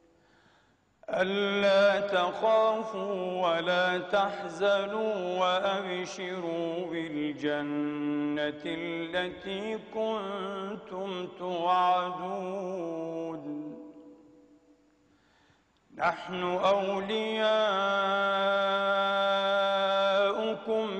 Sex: male